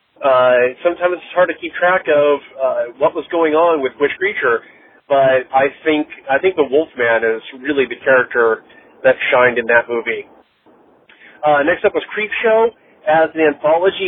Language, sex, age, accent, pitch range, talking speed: English, male, 40-59, American, 130-185 Hz, 170 wpm